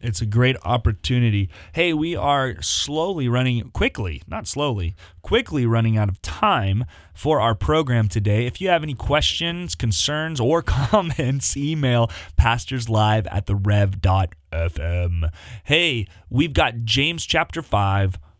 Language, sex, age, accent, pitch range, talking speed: English, male, 20-39, American, 95-125 Hz, 125 wpm